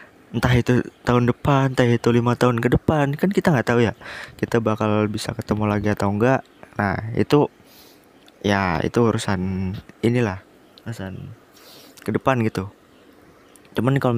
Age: 20-39